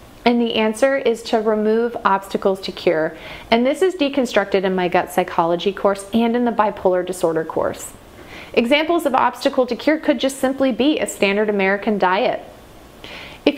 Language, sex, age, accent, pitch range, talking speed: English, female, 30-49, American, 195-245 Hz, 170 wpm